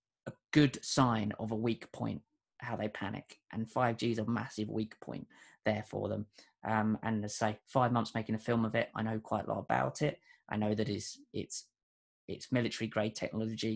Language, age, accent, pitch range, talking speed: English, 20-39, British, 110-130 Hz, 205 wpm